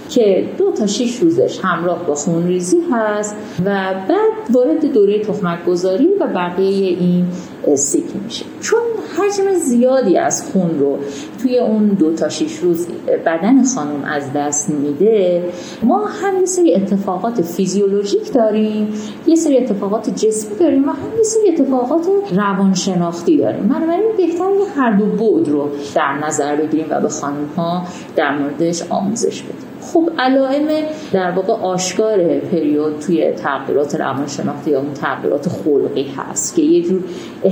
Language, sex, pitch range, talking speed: Persian, female, 165-250 Hz, 140 wpm